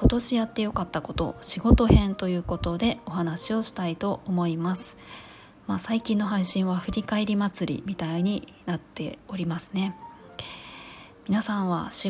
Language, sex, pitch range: Japanese, female, 175-220 Hz